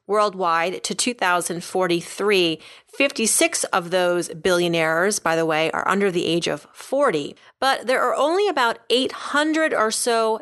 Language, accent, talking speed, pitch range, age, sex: English, American, 140 wpm, 170-220 Hz, 30-49, female